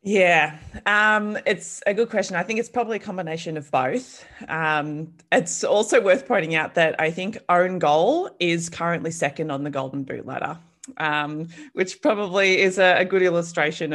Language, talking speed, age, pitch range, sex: English, 175 wpm, 20-39, 155-225 Hz, female